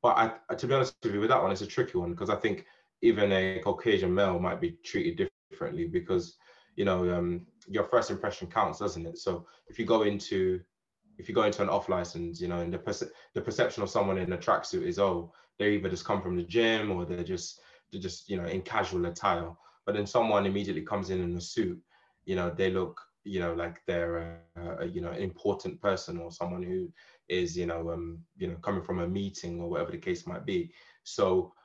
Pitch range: 85-120 Hz